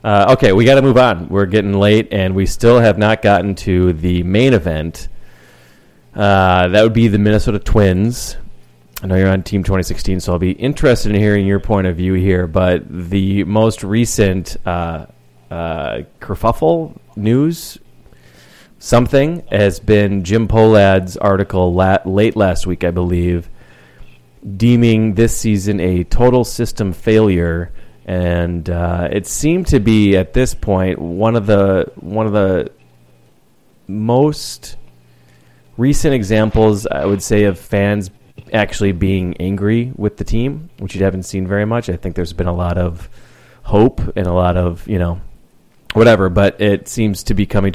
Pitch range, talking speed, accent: 90-110 Hz, 160 wpm, American